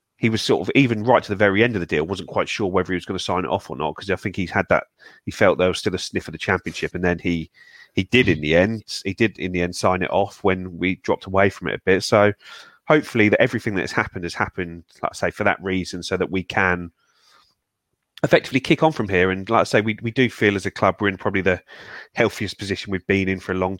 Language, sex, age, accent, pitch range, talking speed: English, male, 30-49, British, 90-105 Hz, 285 wpm